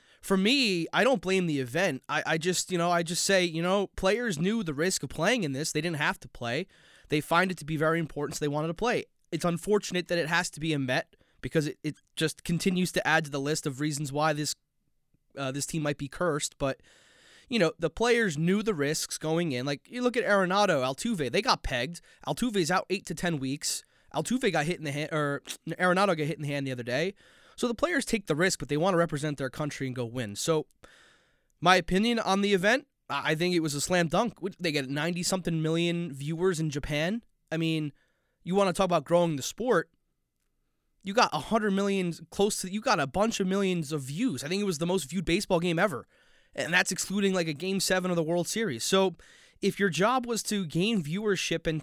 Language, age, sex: English, 20-39, male